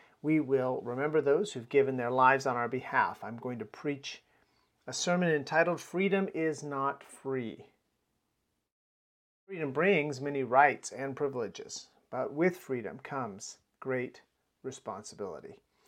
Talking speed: 130 wpm